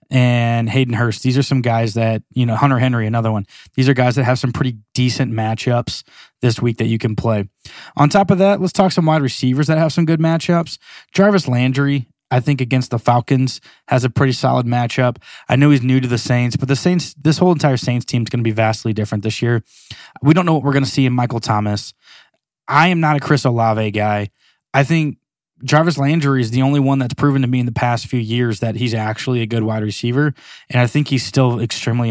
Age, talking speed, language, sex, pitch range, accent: 20-39, 235 wpm, English, male, 115-145 Hz, American